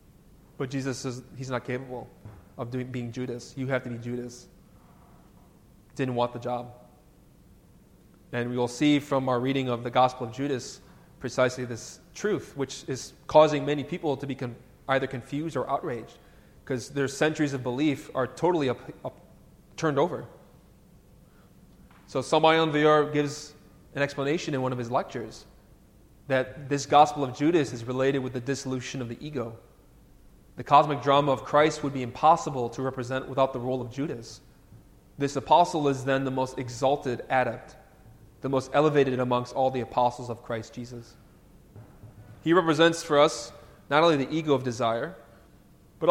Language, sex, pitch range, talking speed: English, male, 125-145 Hz, 160 wpm